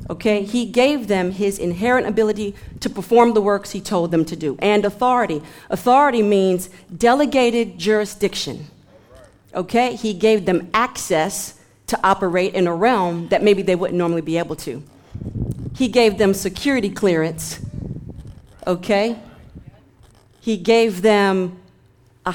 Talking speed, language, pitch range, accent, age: 135 wpm, English, 180-245 Hz, American, 40-59